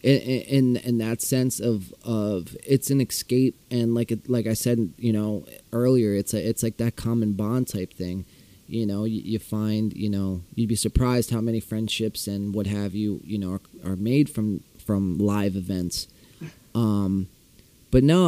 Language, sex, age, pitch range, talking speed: English, male, 30-49, 105-135 Hz, 185 wpm